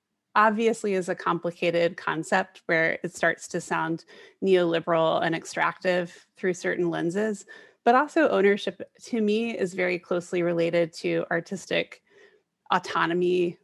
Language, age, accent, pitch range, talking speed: English, 30-49, American, 175-220 Hz, 125 wpm